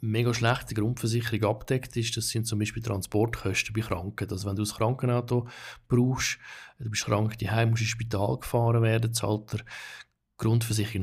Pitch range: 105-120 Hz